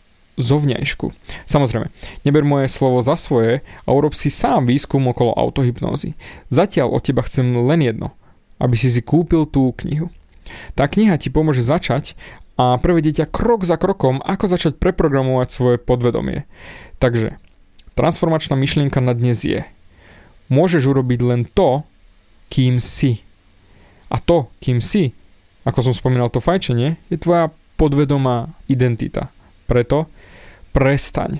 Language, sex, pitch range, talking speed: Slovak, male, 125-165 Hz, 130 wpm